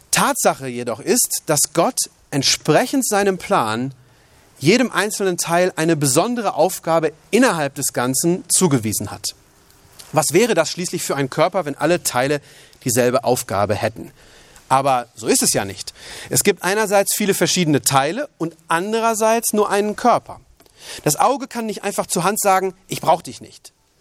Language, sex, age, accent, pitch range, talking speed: German, male, 30-49, German, 135-195 Hz, 150 wpm